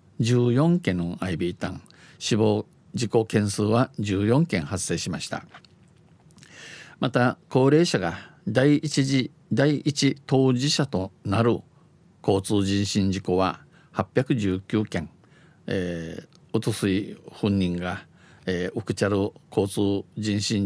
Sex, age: male, 50-69